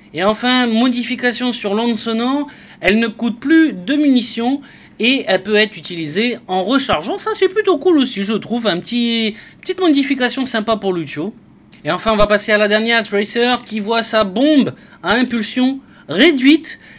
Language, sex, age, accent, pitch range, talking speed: French, male, 30-49, French, 210-275 Hz, 175 wpm